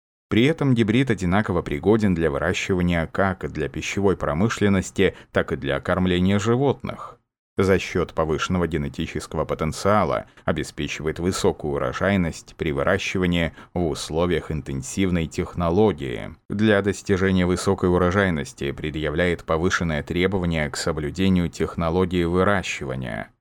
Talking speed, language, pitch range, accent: 105 wpm, Russian, 80-105 Hz, native